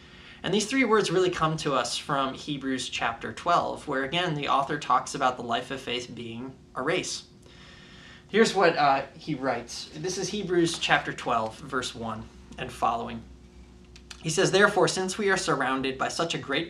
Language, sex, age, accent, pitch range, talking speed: English, male, 20-39, American, 125-170 Hz, 180 wpm